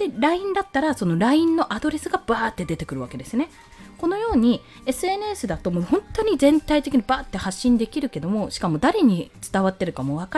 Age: 20-39